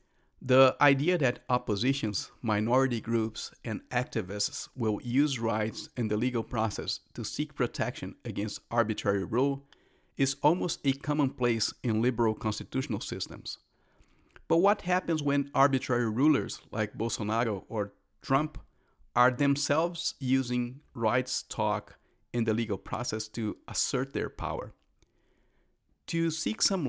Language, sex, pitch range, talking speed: English, male, 110-140 Hz, 125 wpm